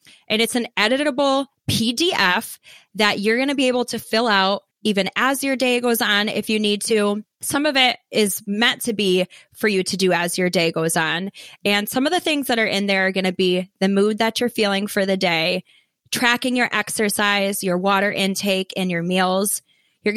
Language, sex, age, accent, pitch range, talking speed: English, female, 20-39, American, 190-235 Hz, 210 wpm